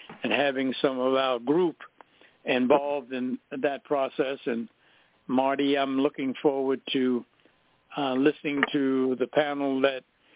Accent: American